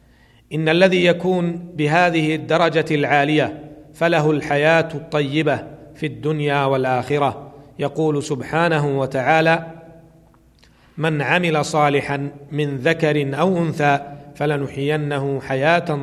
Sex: male